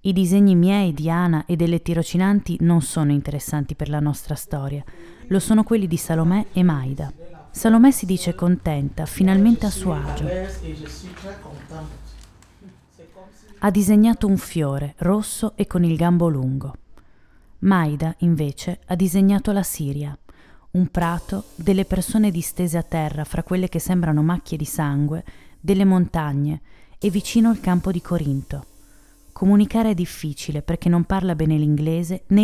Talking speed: 140 wpm